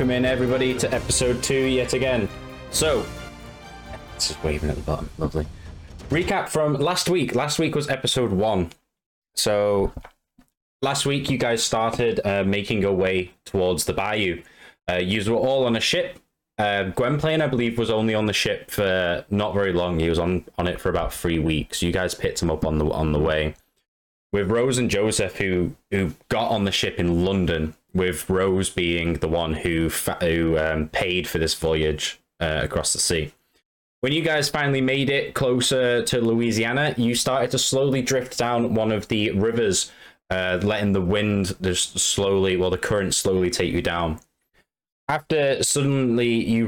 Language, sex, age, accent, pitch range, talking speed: English, male, 10-29, British, 90-125 Hz, 180 wpm